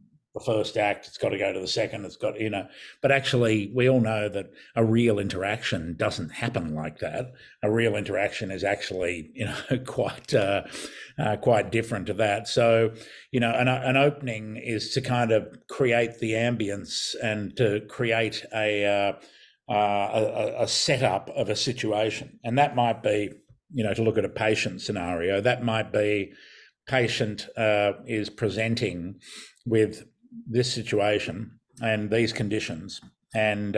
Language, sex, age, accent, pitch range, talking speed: English, male, 50-69, Australian, 105-115 Hz, 165 wpm